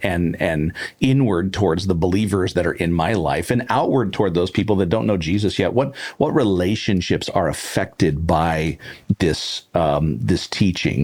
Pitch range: 80-105 Hz